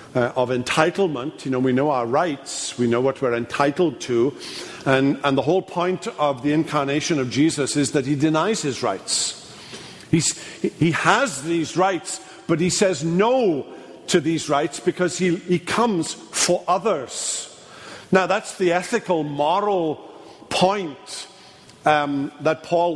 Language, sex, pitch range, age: English, male, 145-190 Hz, 50-69